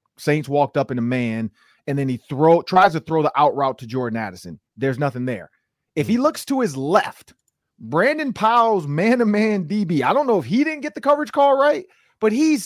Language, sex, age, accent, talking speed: English, male, 30-49, American, 215 wpm